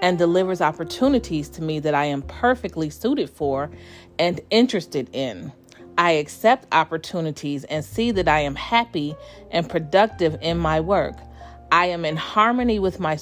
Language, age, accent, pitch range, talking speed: English, 40-59, American, 150-195 Hz, 155 wpm